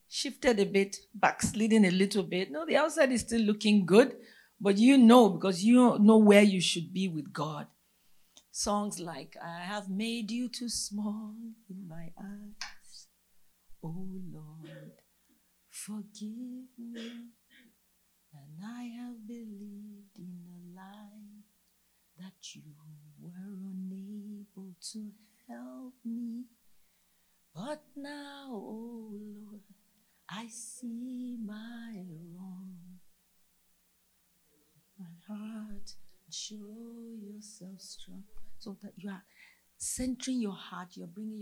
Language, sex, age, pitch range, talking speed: English, female, 40-59, 185-230 Hz, 110 wpm